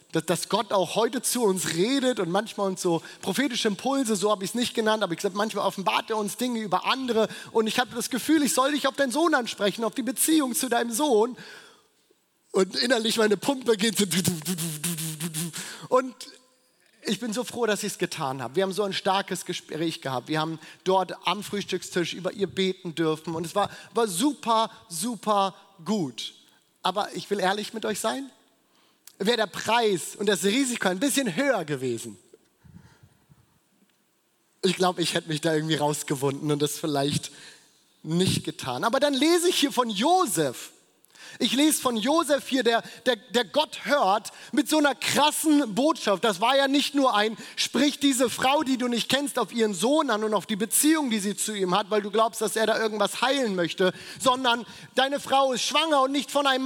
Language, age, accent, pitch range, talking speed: German, 30-49, German, 190-265 Hz, 195 wpm